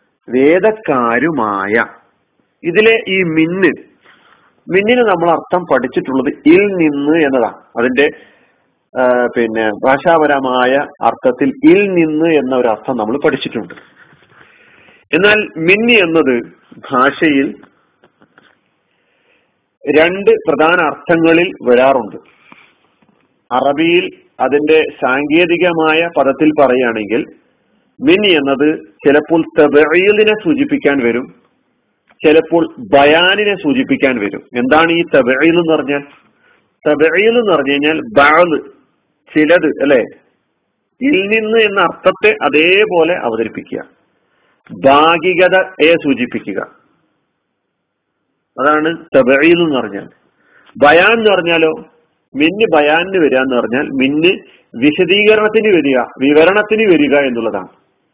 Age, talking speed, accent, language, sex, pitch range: 40-59, 85 wpm, native, Malayalam, male, 140-200 Hz